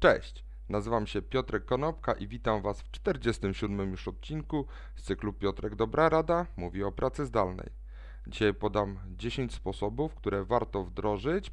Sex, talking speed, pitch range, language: male, 145 wpm, 95-125 Hz, Polish